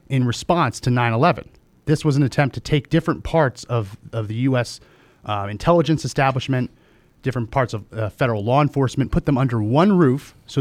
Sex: male